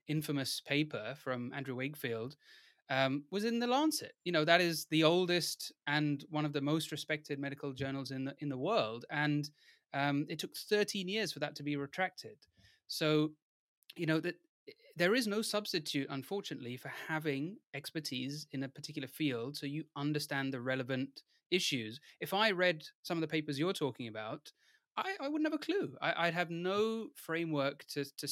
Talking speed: 180 wpm